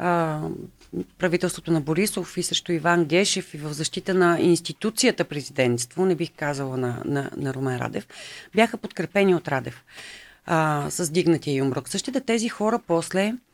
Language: Bulgarian